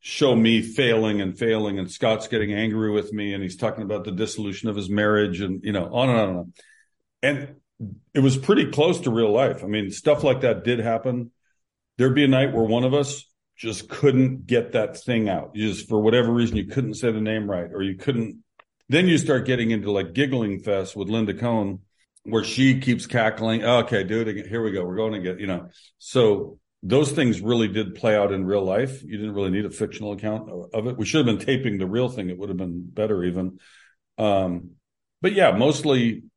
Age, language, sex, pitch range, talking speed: 50-69, English, male, 105-130 Hz, 225 wpm